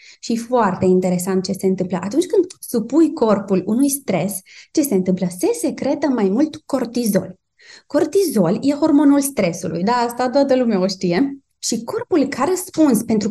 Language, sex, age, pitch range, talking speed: Romanian, female, 20-39, 195-280 Hz, 160 wpm